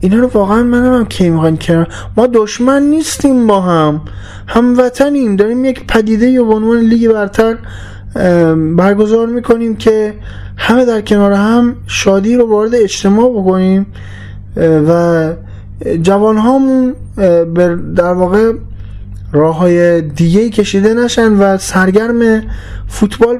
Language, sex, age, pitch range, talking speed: Persian, male, 20-39, 135-210 Hz, 115 wpm